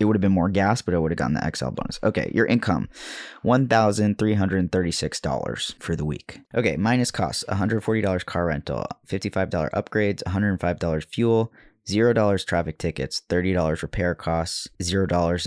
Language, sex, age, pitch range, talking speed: English, male, 20-39, 80-105 Hz, 145 wpm